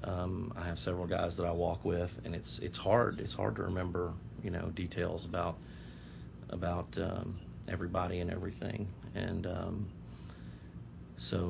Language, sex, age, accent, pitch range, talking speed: English, male, 40-59, American, 85-95 Hz, 150 wpm